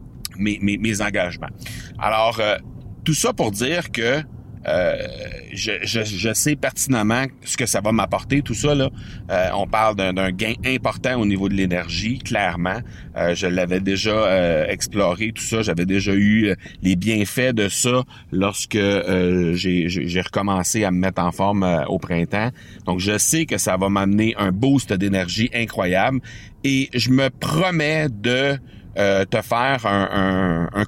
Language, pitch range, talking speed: French, 100-125 Hz, 170 wpm